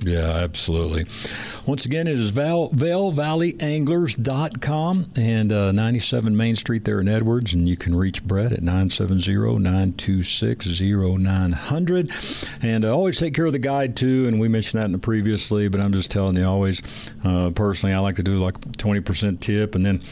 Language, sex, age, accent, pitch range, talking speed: English, male, 60-79, American, 95-120 Hz, 175 wpm